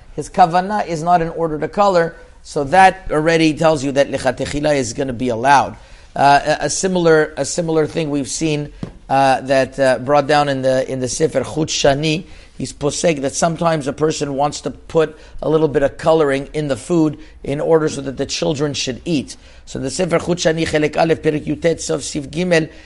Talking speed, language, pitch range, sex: 185 wpm, English, 140-165 Hz, male